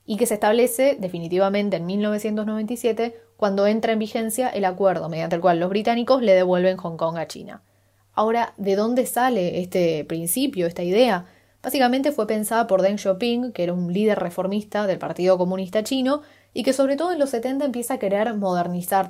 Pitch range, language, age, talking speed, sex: 185-235 Hz, Spanish, 20-39, 180 wpm, female